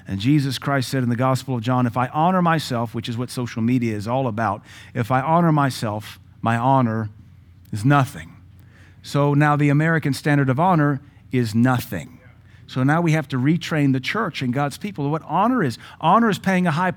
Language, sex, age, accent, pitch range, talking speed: English, male, 40-59, American, 120-160 Hz, 200 wpm